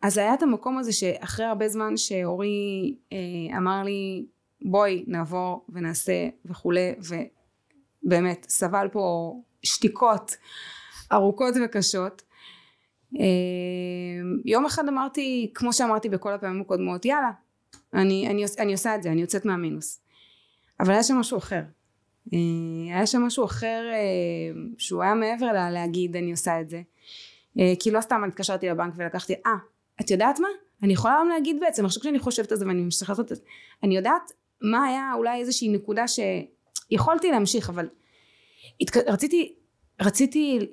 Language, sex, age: Hebrew, female, 20-39